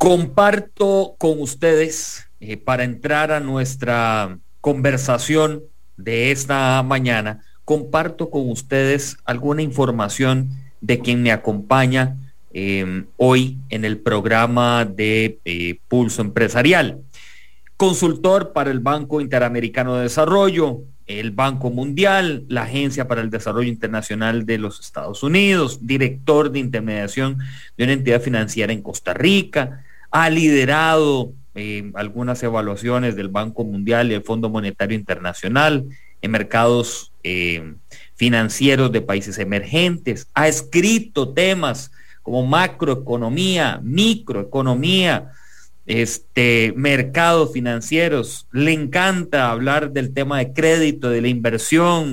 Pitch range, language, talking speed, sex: 115-150 Hz, English, 115 wpm, male